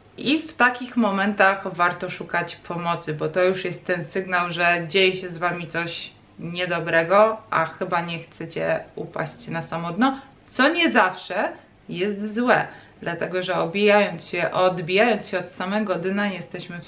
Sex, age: female, 20-39